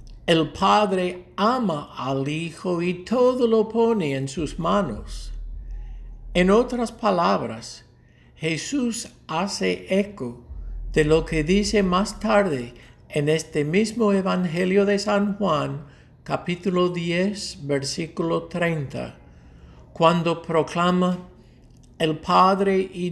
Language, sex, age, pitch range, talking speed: English, male, 60-79, 145-200 Hz, 105 wpm